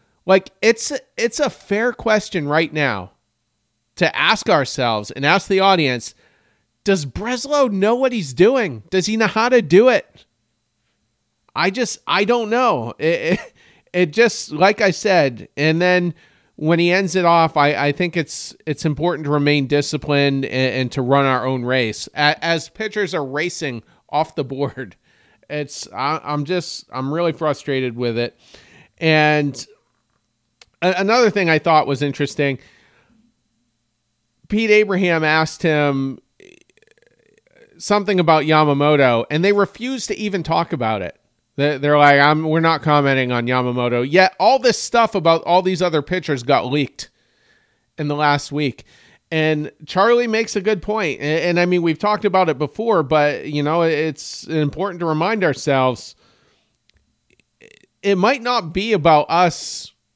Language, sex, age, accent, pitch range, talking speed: English, male, 40-59, American, 140-200 Hz, 155 wpm